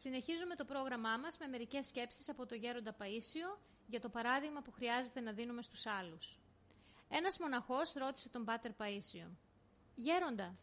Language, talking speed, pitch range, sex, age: Greek, 150 wpm, 220-280 Hz, female, 30-49